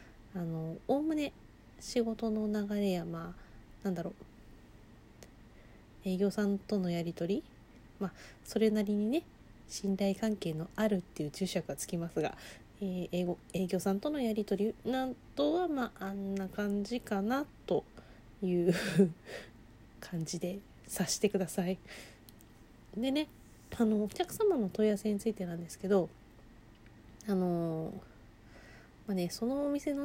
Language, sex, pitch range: Japanese, female, 150-205 Hz